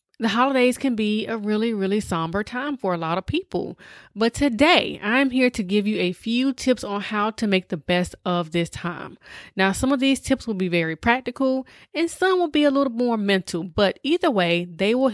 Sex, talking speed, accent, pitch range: female, 220 wpm, American, 180-240 Hz